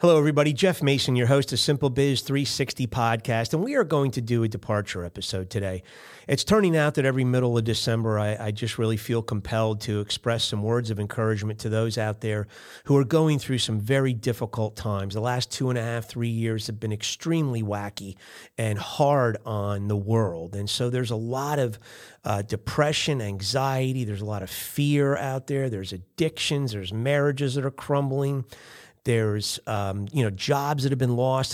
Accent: American